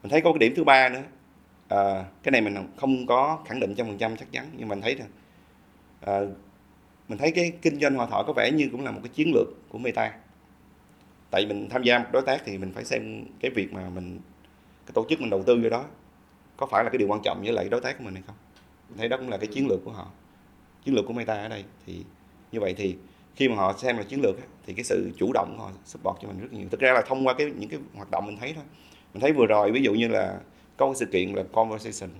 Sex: male